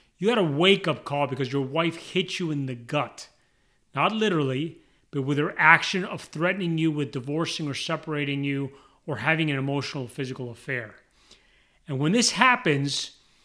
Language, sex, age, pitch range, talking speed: English, male, 30-49, 135-170 Hz, 165 wpm